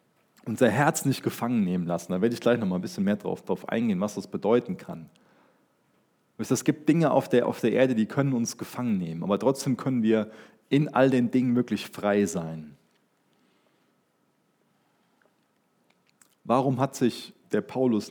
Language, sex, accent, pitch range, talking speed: German, male, German, 110-150 Hz, 165 wpm